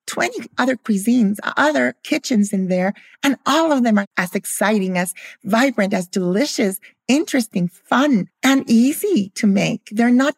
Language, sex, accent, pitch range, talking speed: English, female, American, 175-220 Hz, 150 wpm